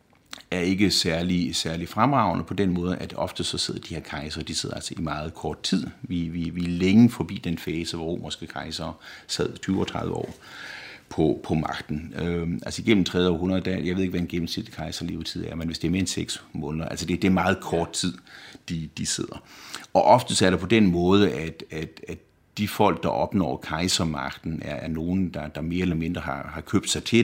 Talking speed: 220 wpm